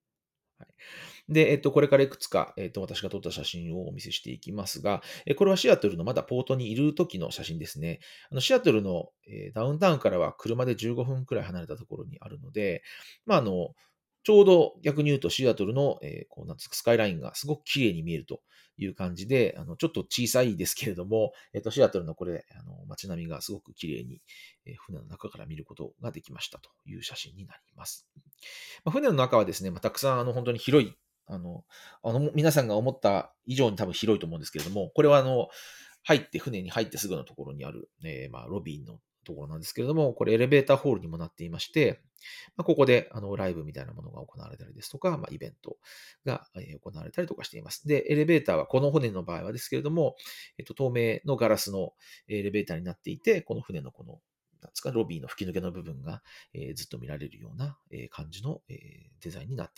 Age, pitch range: 40-59, 105-150 Hz